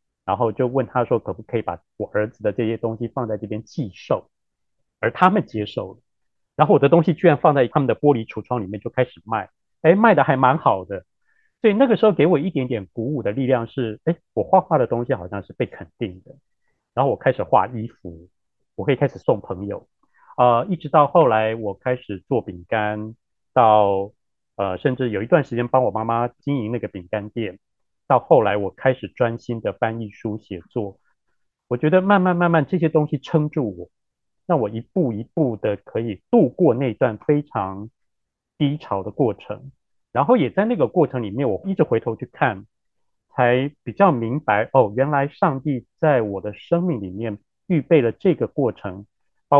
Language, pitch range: Chinese, 105-145 Hz